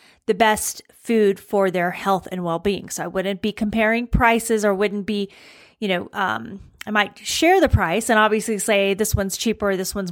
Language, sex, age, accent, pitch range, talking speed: English, female, 30-49, American, 195-250 Hz, 195 wpm